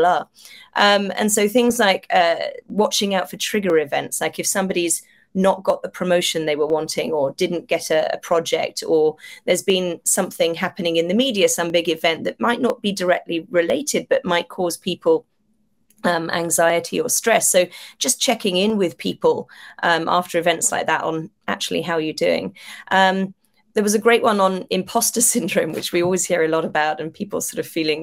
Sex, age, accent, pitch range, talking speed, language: female, 30-49, British, 170-225 Hz, 195 wpm, English